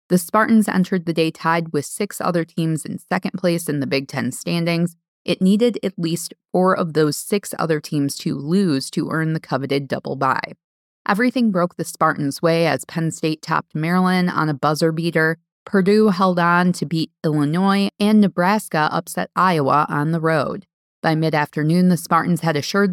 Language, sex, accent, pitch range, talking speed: English, female, American, 155-190 Hz, 180 wpm